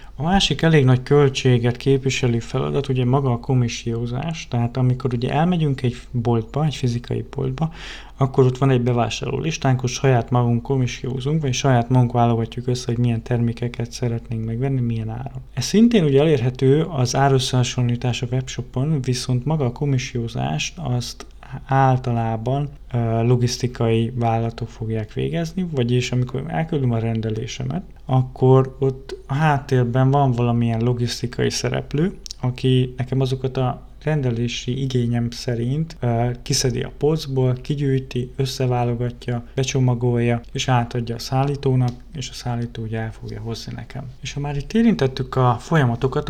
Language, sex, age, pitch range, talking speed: Hungarian, male, 20-39, 120-135 Hz, 135 wpm